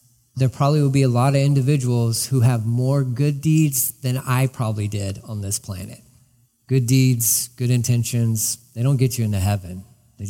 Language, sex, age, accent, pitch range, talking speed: English, male, 40-59, American, 115-135 Hz, 180 wpm